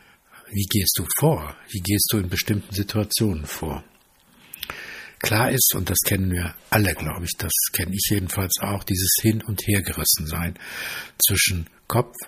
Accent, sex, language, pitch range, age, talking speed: German, male, German, 95-110 Hz, 60-79, 155 wpm